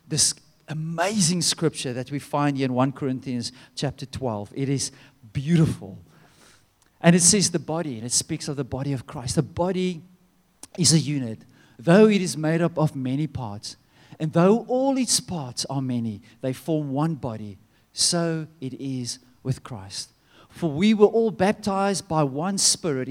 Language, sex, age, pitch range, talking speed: English, male, 40-59, 135-205 Hz, 170 wpm